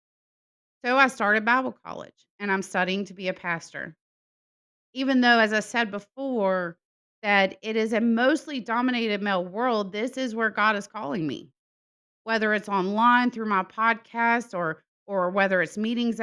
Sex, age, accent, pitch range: female, 30-49, American, 185-230 Hz